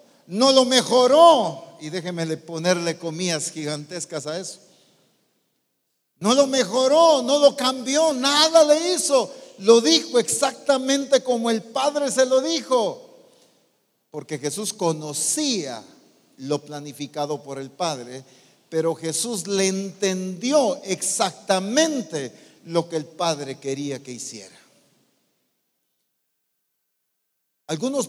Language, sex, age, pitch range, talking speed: English, male, 50-69, 170-245 Hz, 105 wpm